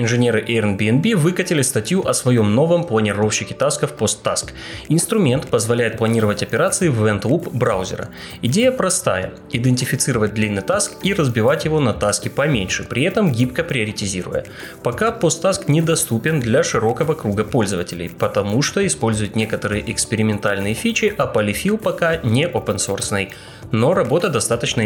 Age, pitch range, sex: 20-39, 105-160 Hz, male